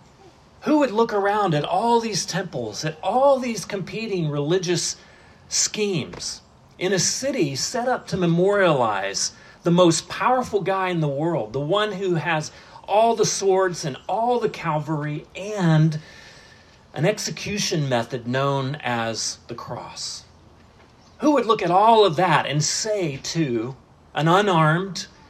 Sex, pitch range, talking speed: male, 135-190 Hz, 140 wpm